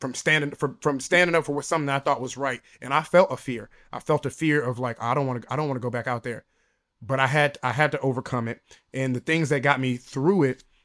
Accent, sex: American, male